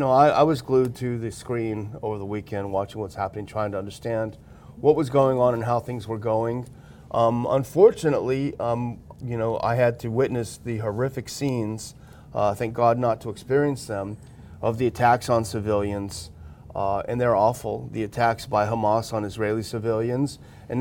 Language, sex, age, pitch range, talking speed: English, male, 30-49, 110-135 Hz, 180 wpm